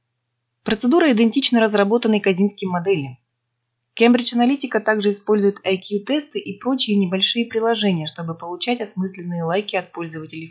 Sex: female